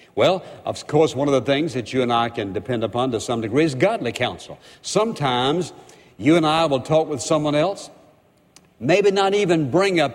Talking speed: 200 wpm